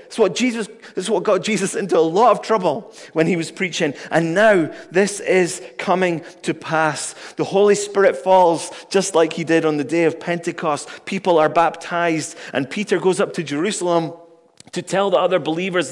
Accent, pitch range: British, 155-195 Hz